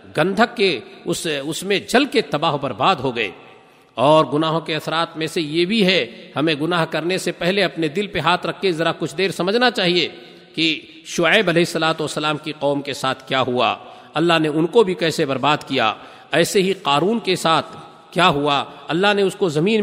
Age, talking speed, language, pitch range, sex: 50-69, 205 wpm, Urdu, 150-185 Hz, male